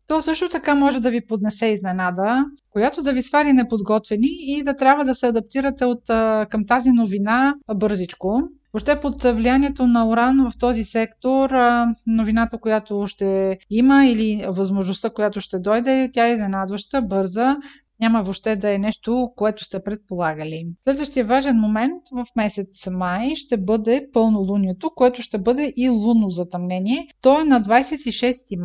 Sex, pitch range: female, 205-255 Hz